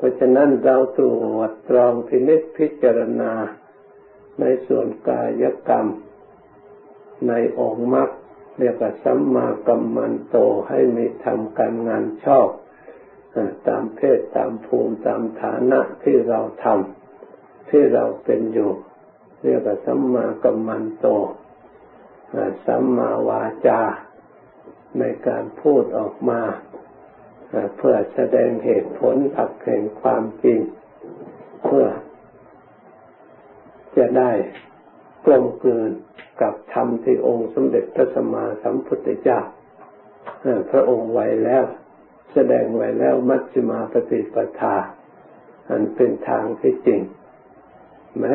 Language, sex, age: Thai, male, 60-79